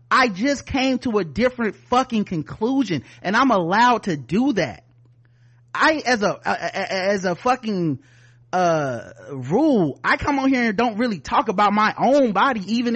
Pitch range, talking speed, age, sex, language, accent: 165-245 Hz, 160 wpm, 30-49, male, English, American